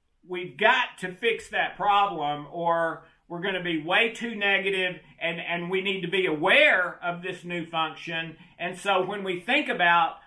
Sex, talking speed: male, 180 wpm